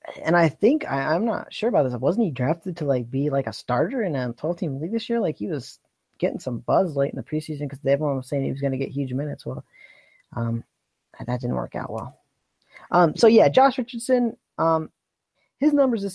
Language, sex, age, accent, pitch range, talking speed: English, male, 20-39, American, 145-185 Hz, 230 wpm